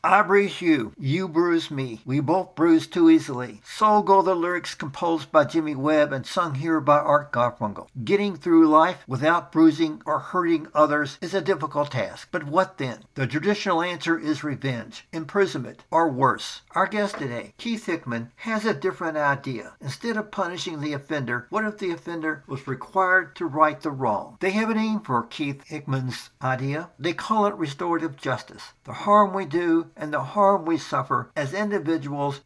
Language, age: English, 60-79